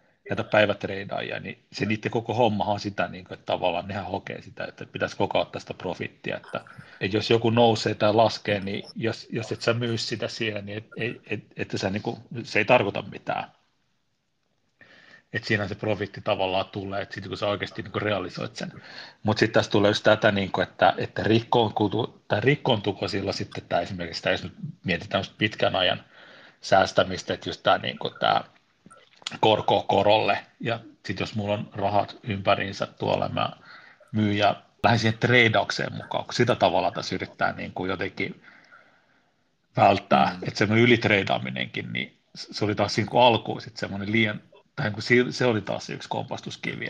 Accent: native